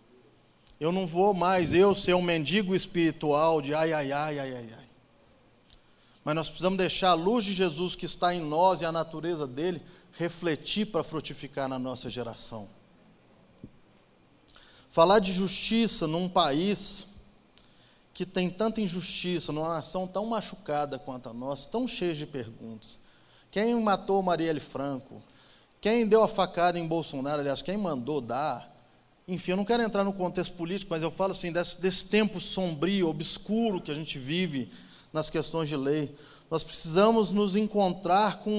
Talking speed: 160 wpm